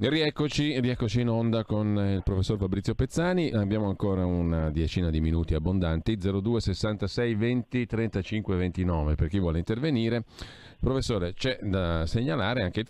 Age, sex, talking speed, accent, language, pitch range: 40-59, male, 145 wpm, native, Italian, 80-105 Hz